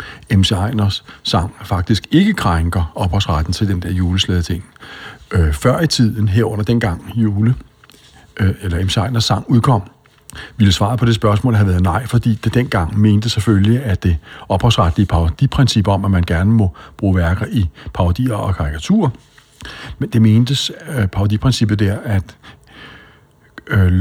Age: 60-79